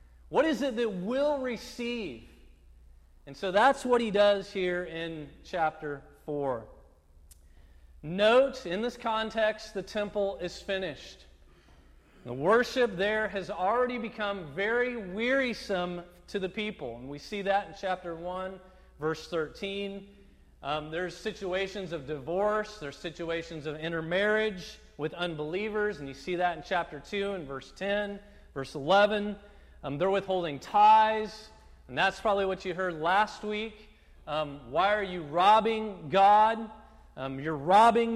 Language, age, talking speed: English, 40-59, 140 wpm